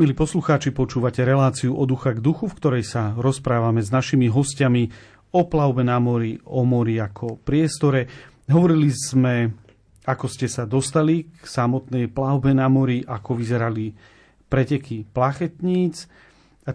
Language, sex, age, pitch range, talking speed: Slovak, male, 40-59, 120-155 Hz, 140 wpm